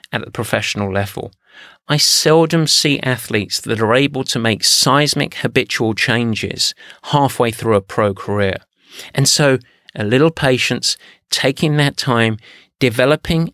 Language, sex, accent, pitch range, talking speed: English, male, British, 110-140 Hz, 135 wpm